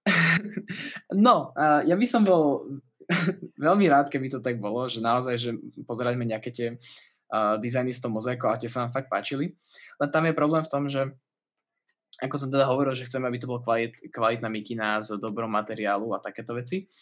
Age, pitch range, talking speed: 20-39, 110-130 Hz, 190 wpm